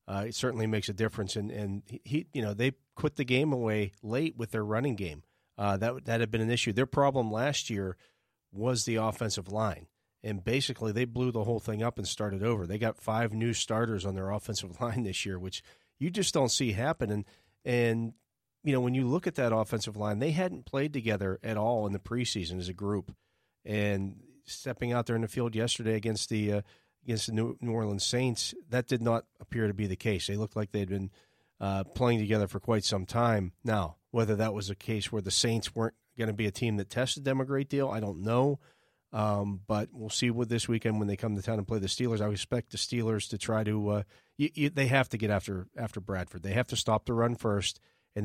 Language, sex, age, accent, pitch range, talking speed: English, male, 40-59, American, 100-120 Hz, 235 wpm